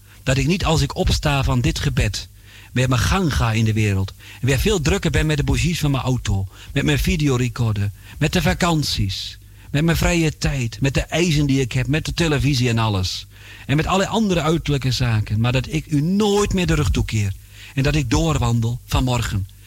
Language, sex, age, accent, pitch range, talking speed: Dutch, male, 40-59, Dutch, 100-150 Hz, 205 wpm